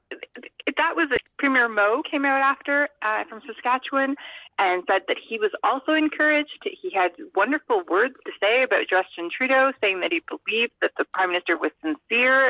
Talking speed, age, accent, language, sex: 185 wpm, 30-49, American, English, female